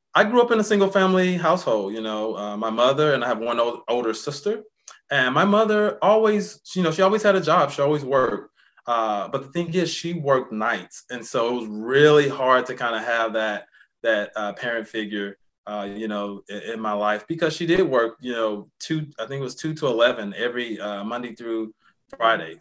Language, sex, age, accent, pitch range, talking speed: English, male, 20-39, American, 110-150 Hz, 220 wpm